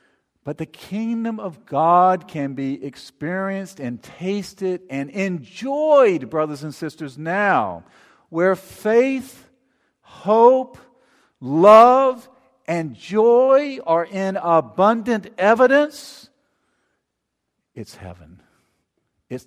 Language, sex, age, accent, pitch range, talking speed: English, male, 50-69, American, 125-200 Hz, 90 wpm